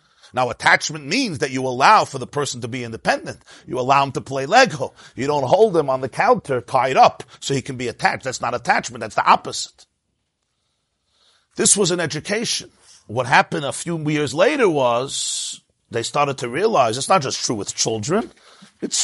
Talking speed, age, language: 190 wpm, 50-69, English